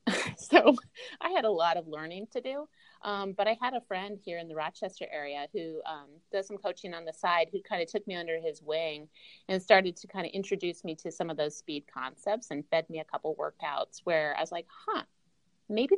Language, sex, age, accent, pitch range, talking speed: English, female, 30-49, American, 165-215 Hz, 230 wpm